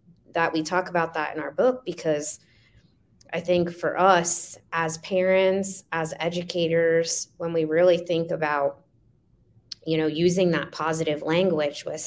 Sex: female